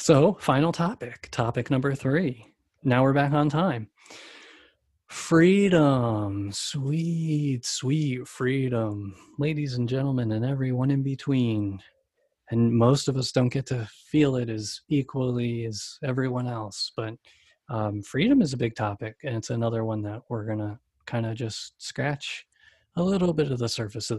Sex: male